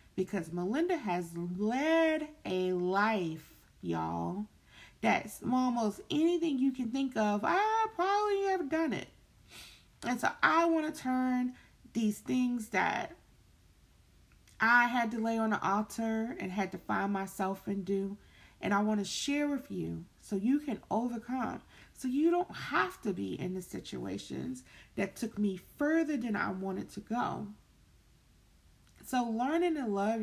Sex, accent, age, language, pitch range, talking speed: female, American, 30-49, English, 190-260 Hz, 150 wpm